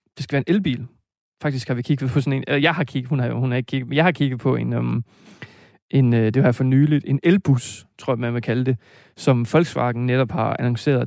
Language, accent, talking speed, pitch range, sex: Danish, native, 265 wpm, 125-150 Hz, male